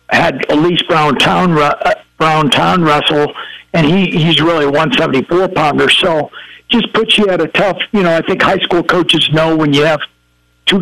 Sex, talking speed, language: male, 185 wpm, English